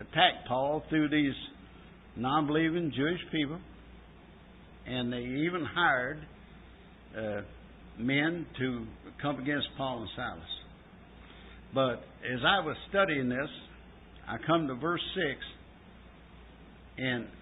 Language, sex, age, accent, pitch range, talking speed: English, male, 60-79, American, 130-170 Hz, 105 wpm